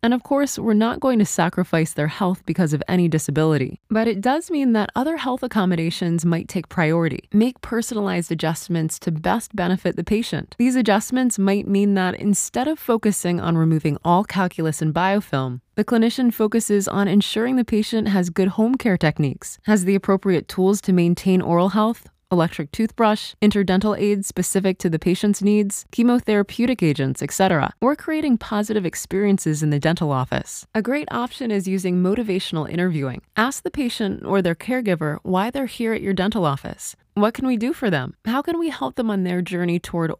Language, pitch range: English, 175-225 Hz